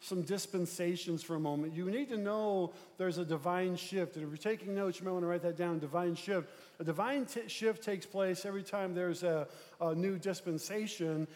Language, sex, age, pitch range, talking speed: English, male, 40-59, 170-205 Hz, 205 wpm